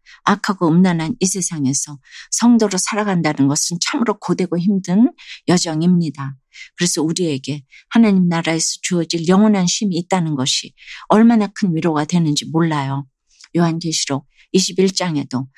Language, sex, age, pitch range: Korean, female, 50-69, 150-190 Hz